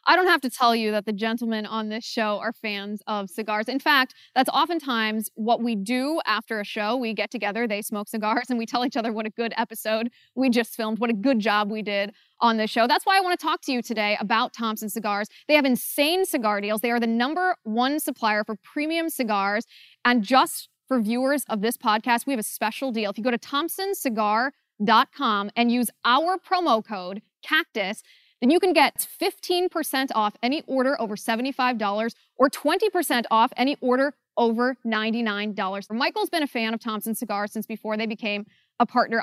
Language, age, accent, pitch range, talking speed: English, 20-39, American, 215-270 Hz, 200 wpm